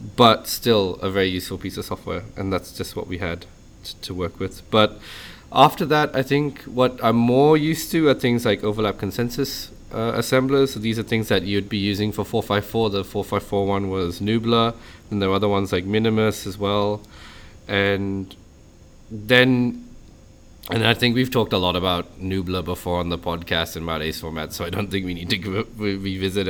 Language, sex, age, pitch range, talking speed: English, male, 20-39, 90-115 Hz, 195 wpm